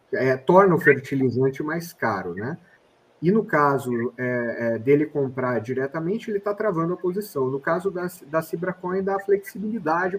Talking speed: 160 wpm